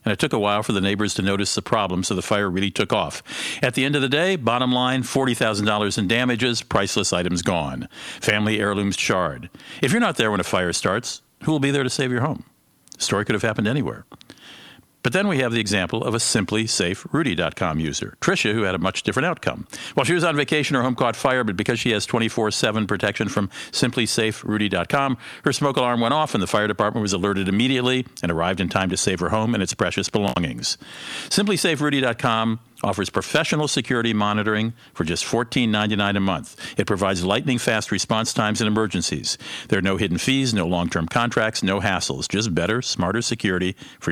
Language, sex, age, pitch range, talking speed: English, male, 50-69, 100-125 Hz, 205 wpm